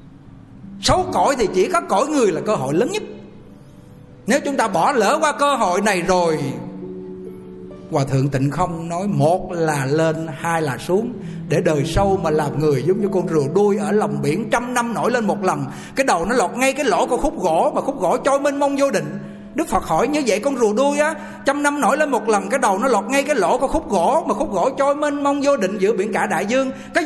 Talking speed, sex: 245 wpm, male